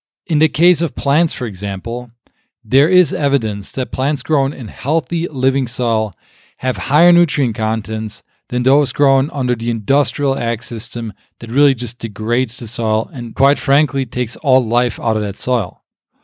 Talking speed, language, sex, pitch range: 165 wpm, English, male, 115-145 Hz